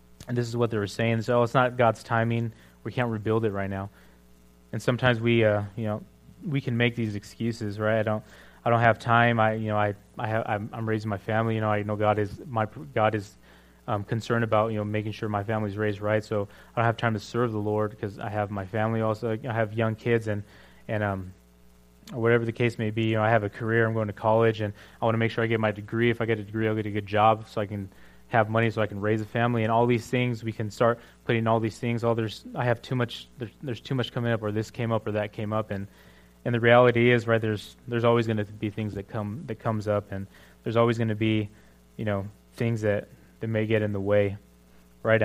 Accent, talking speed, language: American, 270 wpm, English